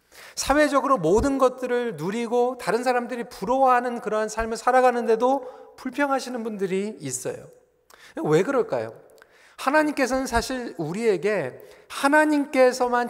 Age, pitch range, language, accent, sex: 40-59, 205-270 Hz, Korean, native, male